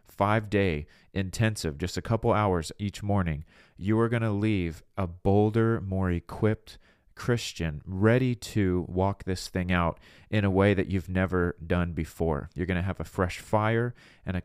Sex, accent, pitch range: male, American, 85-105 Hz